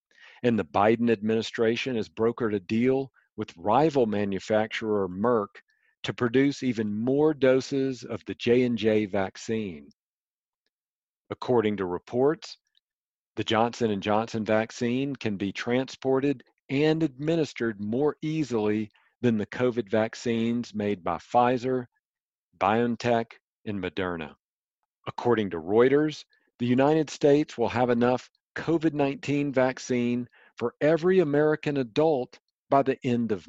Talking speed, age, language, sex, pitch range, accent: 115 wpm, 50-69, English, male, 105-135 Hz, American